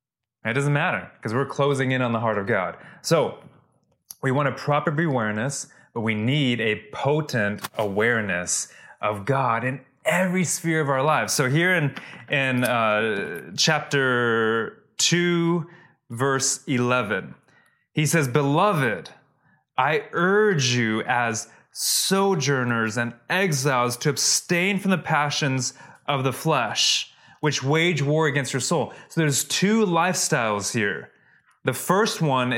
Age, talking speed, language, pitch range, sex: 20-39, 135 wpm, English, 125-165 Hz, male